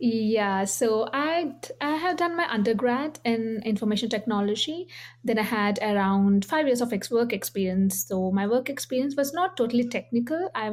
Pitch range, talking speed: 195-240 Hz, 160 wpm